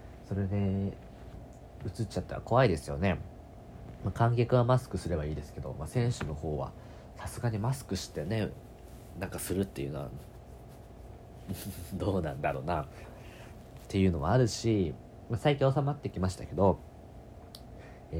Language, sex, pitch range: Japanese, male, 85-115 Hz